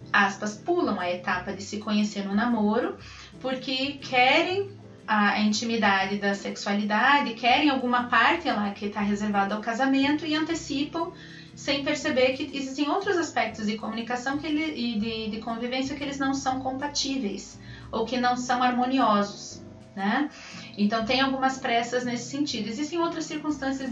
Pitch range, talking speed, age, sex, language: 205-260 Hz, 150 wpm, 30-49, female, Portuguese